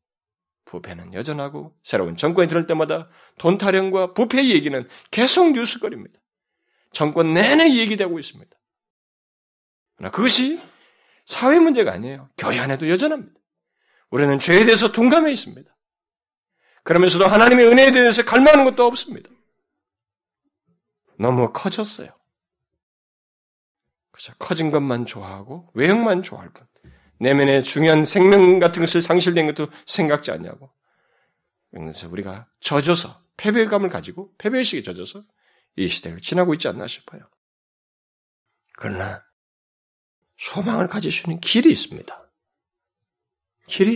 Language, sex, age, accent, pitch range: Korean, male, 40-59, native, 135-225 Hz